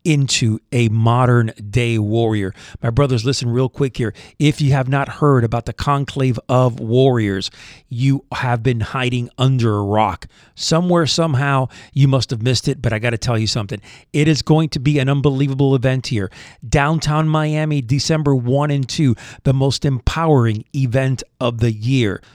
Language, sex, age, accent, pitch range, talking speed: English, male, 40-59, American, 120-140 Hz, 170 wpm